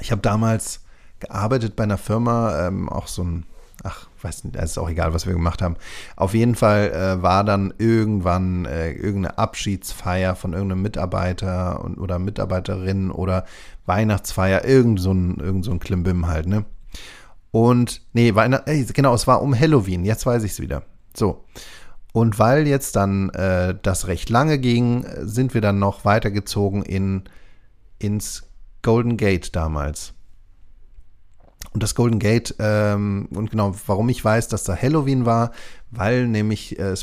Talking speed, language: 160 wpm, German